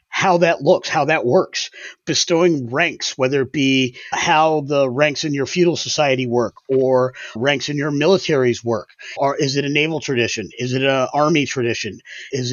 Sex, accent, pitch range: male, American, 125-145 Hz